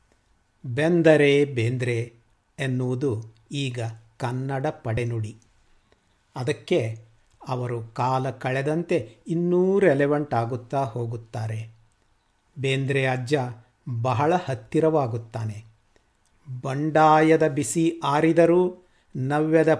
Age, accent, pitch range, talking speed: 50-69, native, 115-155 Hz, 65 wpm